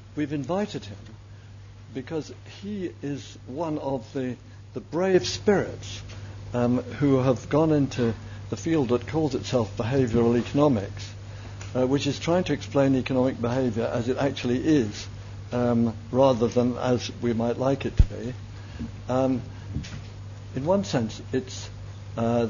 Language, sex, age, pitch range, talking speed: English, male, 60-79, 105-125 Hz, 140 wpm